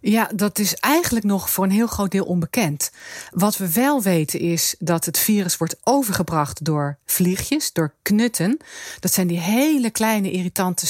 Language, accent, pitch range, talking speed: Dutch, Dutch, 165-220 Hz, 170 wpm